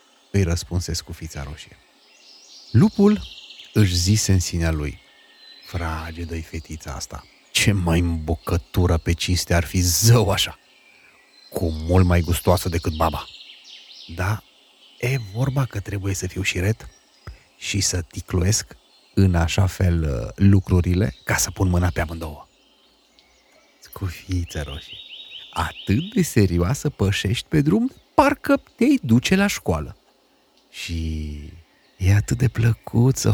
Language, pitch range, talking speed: Romanian, 90-140 Hz, 130 wpm